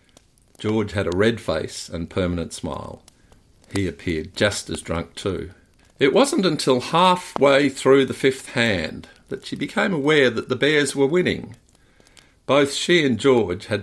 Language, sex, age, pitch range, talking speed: English, male, 50-69, 90-135 Hz, 155 wpm